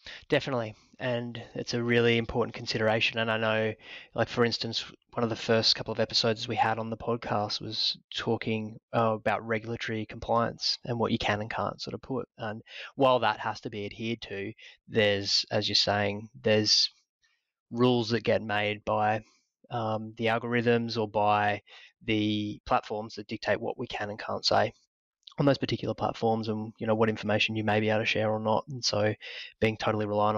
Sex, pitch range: male, 105-115 Hz